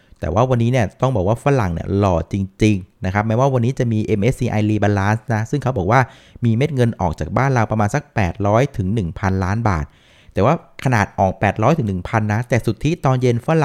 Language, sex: Thai, male